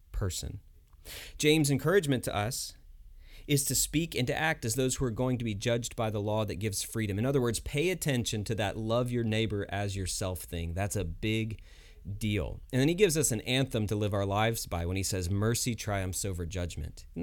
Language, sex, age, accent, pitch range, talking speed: English, male, 30-49, American, 95-145 Hz, 215 wpm